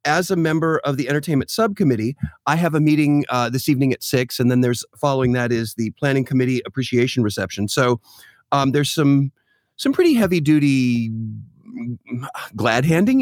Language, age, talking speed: English, 30-49, 160 wpm